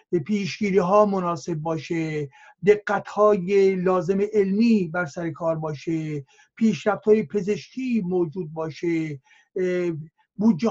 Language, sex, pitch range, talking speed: Persian, male, 165-215 Hz, 95 wpm